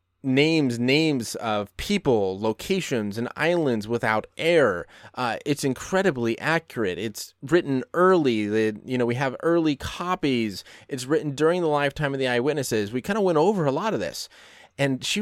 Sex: male